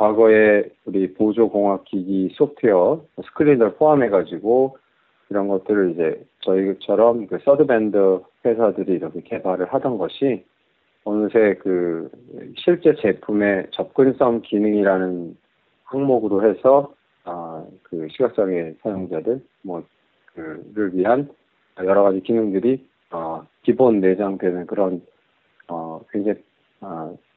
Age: 40-59